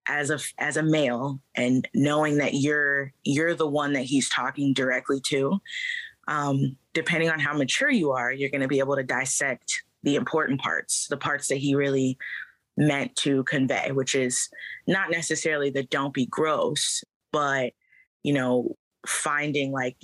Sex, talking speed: female, 165 wpm